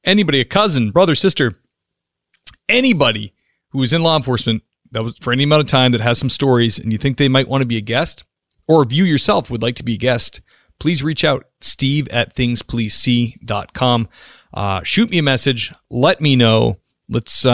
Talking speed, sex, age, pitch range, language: 195 wpm, male, 40-59, 115-145 Hz, English